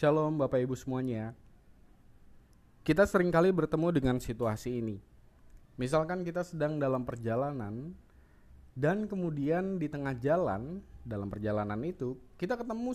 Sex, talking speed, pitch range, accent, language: male, 115 wpm, 120-175 Hz, native, Indonesian